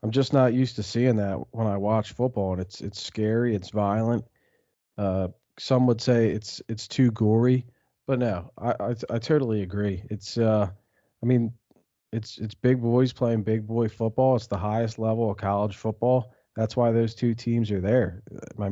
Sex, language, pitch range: male, English, 105-120 Hz